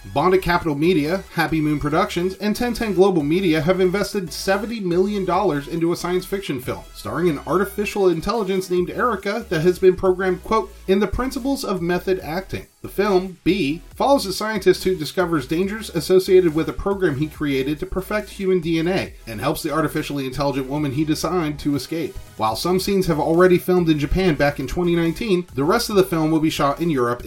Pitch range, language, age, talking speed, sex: 145-185 Hz, English, 30-49, 190 wpm, male